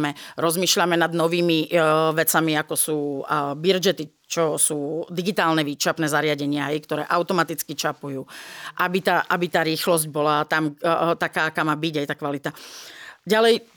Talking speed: 155 wpm